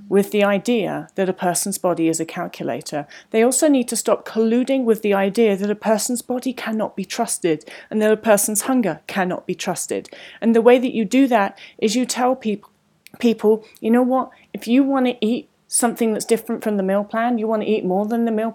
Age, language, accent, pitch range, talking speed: 30-49, English, British, 195-260 Hz, 215 wpm